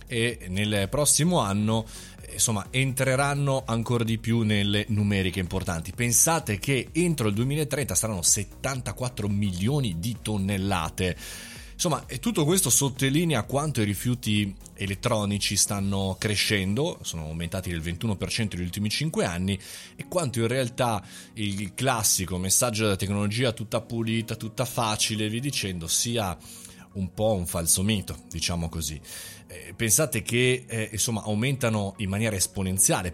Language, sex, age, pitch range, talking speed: Italian, male, 30-49, 95-120 Hz, 130 wpm